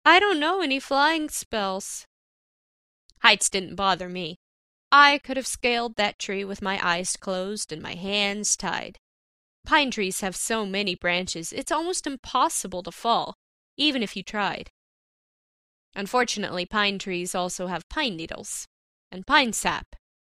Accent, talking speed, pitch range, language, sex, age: American, 145 wpm, 185-235 Hz, English, female, 10-29